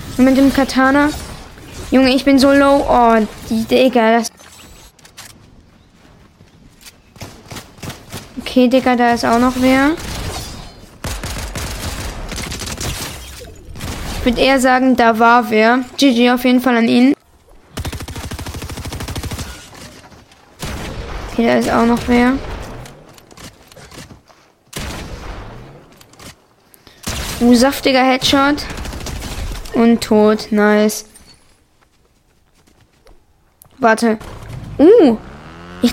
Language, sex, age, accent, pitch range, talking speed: German, female, 20-39, German, 230-270 Hz, 75 wpm